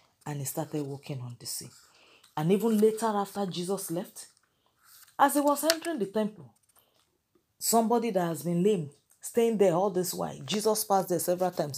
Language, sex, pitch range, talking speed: English, female, 145-195 Hz, 175 wpm